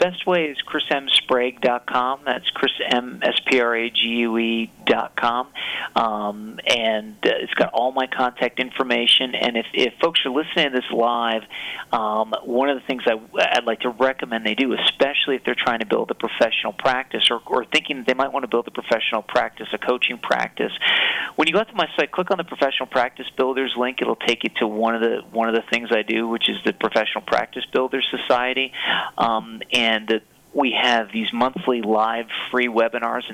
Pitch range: 115-130 Hz